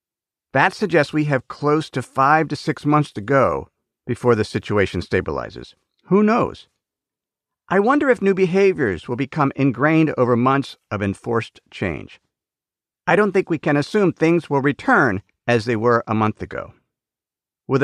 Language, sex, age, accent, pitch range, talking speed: English, male, 50-69, American, 125-180 Hz, 160 wpm